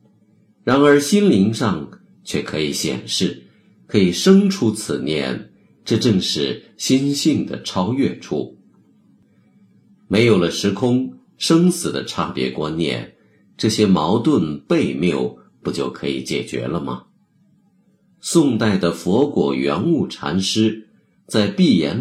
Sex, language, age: male, Chinese, 50-69